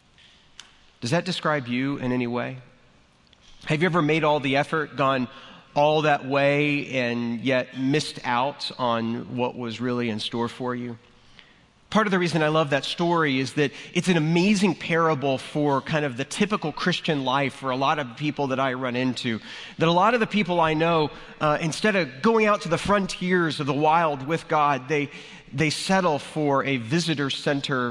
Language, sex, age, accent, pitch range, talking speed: English, male, 30-49, American, 125-155 Hz, 185 wpm